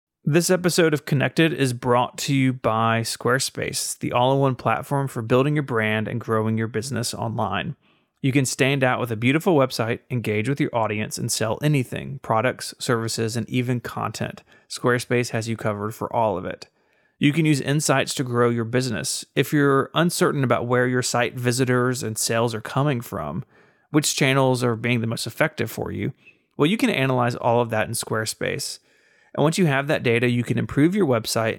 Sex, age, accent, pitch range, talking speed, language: male, 30-49, American, 115-140 Hz, 190 wpm, English